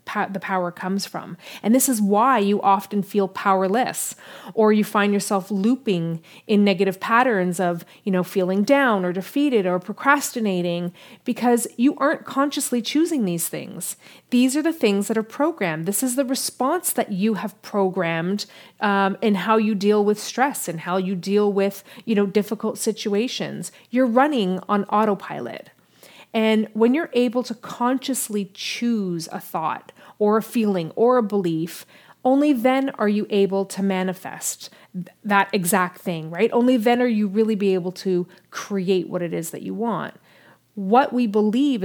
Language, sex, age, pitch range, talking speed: English, female, 30-49, 190-240 Hz, 165 wpm